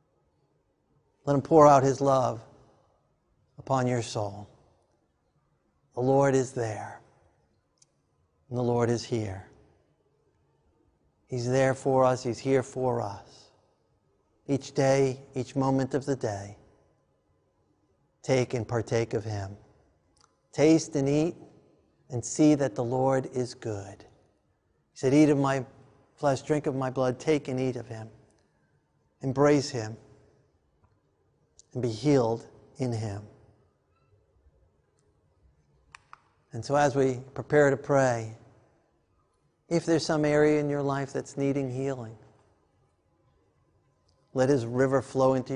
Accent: American